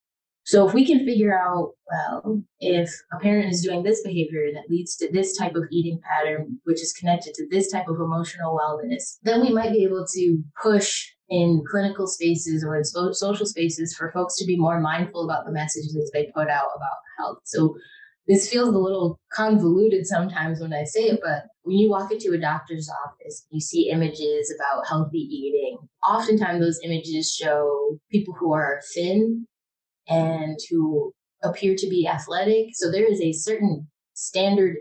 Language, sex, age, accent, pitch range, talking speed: English, female, 20-39, American, 155-200 Hz, 180 wpm